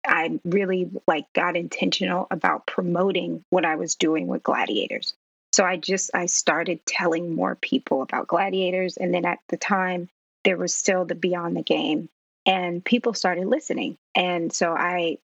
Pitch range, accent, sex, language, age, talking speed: 175-195 Hz, American, female, English, 30-49, 165 wpm